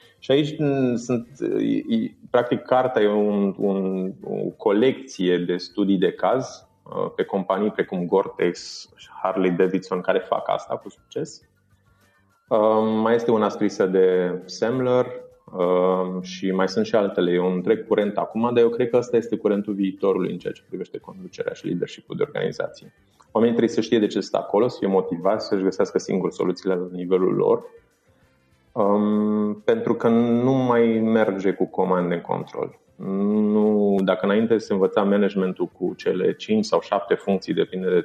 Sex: male